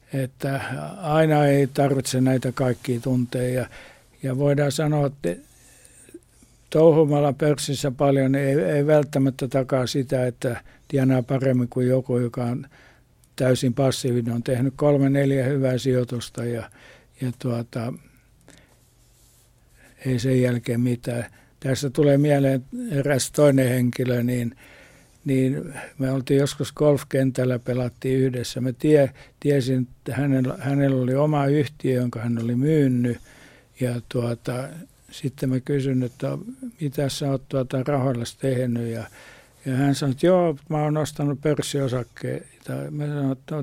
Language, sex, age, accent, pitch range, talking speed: Finnish, male, 60-79, native, 125-145 Hz, 130 wpm